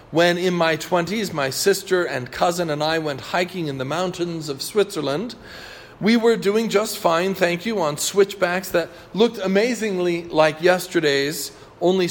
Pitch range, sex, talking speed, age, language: 150-205 Hz, male, 160 wpm, 40-59, English